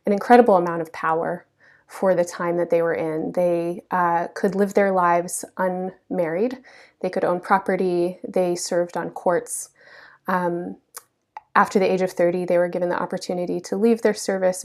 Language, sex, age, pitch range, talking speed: English, female, 30-49, 175-200 Hz, 170 wpm